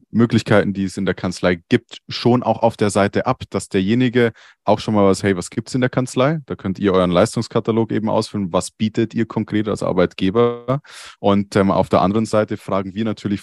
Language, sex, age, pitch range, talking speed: German, male, 20-39, 95-115 Hz, 210 wpm